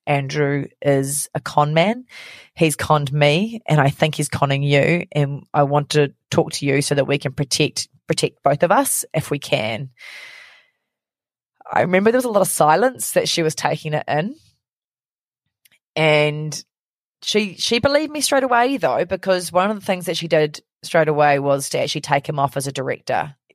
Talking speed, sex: 190 wpm, female